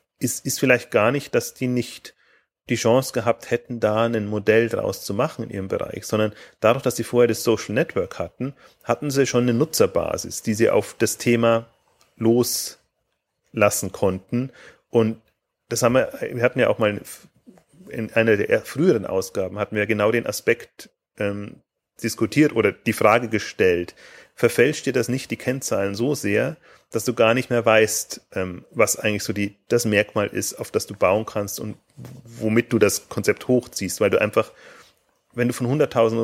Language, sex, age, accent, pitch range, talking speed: German, male, 30-49, German, 105-120 Hz, 175 wpm